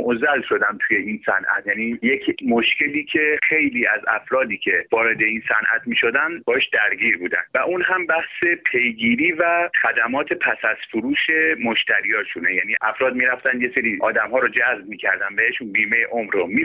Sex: male